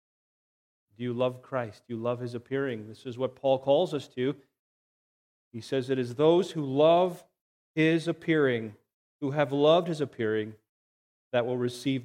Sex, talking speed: male, 165 wpm